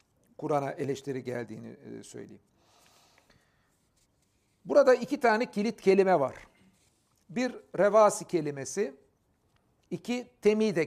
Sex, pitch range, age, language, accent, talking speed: male, 150-205 Hz, 60-79, Turkish, native, 85 wpm